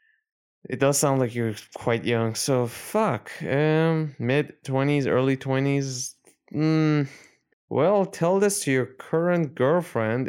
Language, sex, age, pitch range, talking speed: English, male, 20-39, 115-155 Hz, 120 wpm